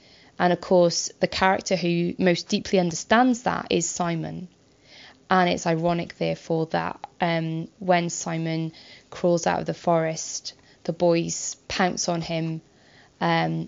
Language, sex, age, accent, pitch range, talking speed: English, female, 20-39, British, 155-180 Hz, 135 wpm